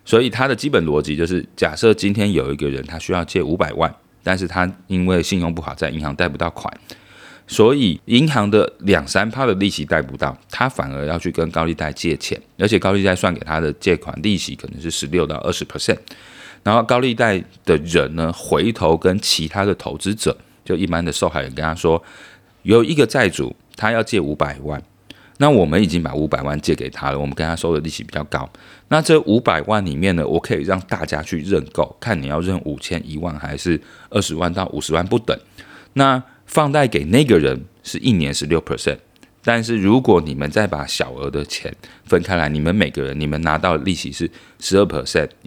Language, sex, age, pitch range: Chinese, male, 30-49, 75-100 Hz